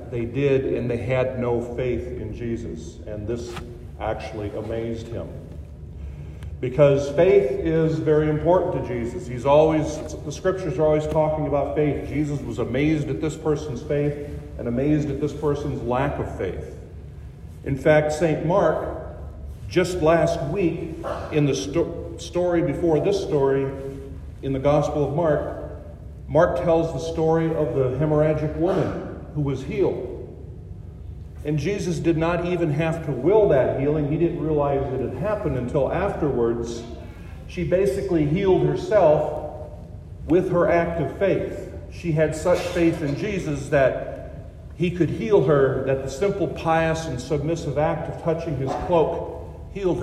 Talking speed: 150 wpm